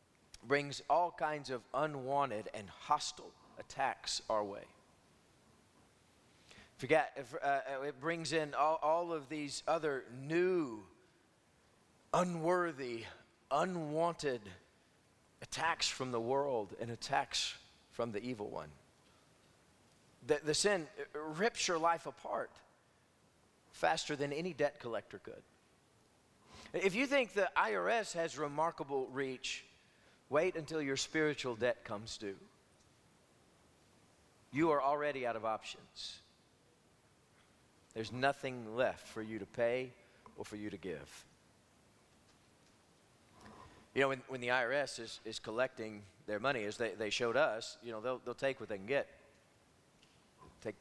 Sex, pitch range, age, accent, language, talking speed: male, 115-150 Hz, 40-59, American, English, 125 wpm